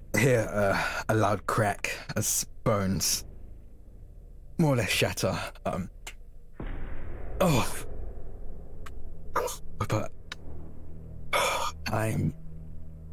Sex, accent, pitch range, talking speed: male, British, 80-105 Hz, 70 wpm